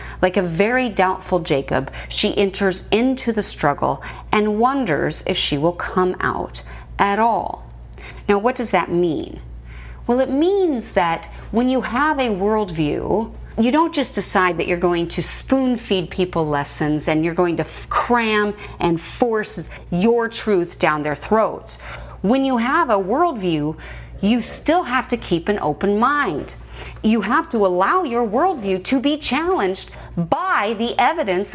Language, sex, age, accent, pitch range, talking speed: English, female, 30-49, American, 175-265 Hz, 160 wpm